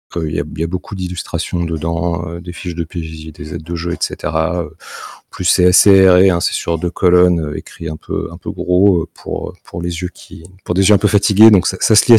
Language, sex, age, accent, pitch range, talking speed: French, male, 40-59, French, 85-105 Hz, 245 wpm